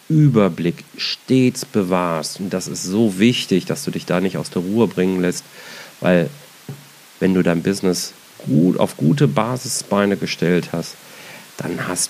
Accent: German